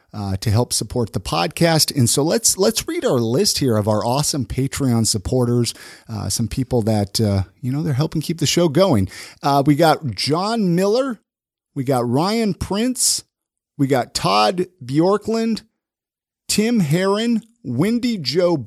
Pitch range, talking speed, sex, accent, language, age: 130-210 Hz, 160 wpm, male, American, English, 50-69